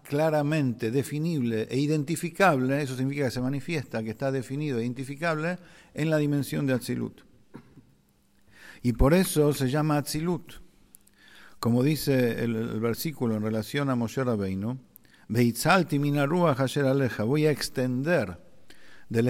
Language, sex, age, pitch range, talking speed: English, male, 50-69, 120-150 Hz, 130 wpm